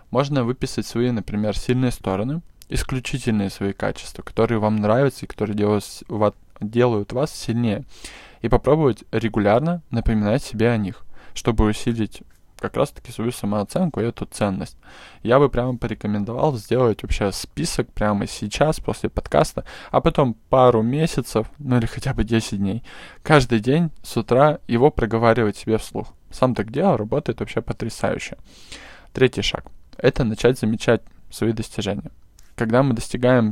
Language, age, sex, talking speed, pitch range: Russian, 20-39, male, 140 wpm, 105-130 Hz